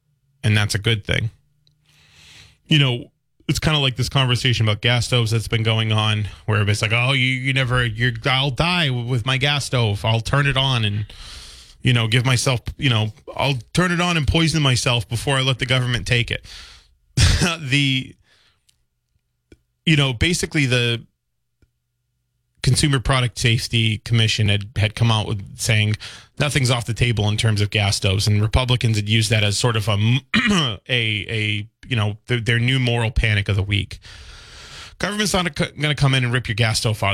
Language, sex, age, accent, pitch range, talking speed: English, male, 20-39, American, 105-135 Hz, 185 wpm